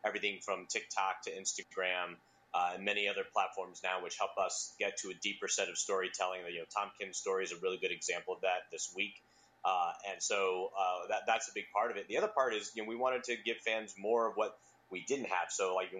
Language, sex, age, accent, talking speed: English, male, 30-49, American, 250 wpm